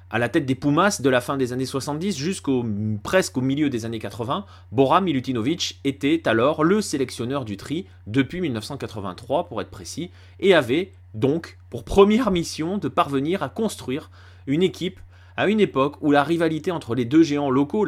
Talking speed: 180 wpm